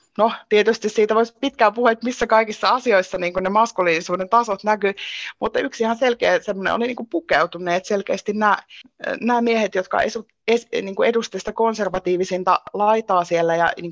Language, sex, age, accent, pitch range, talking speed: Finnish, female, 30-49, native, 180-230 Hz, 145 wpm